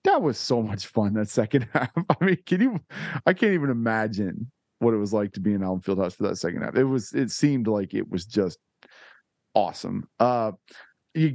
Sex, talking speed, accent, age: male, 210 wpm, American, 40-59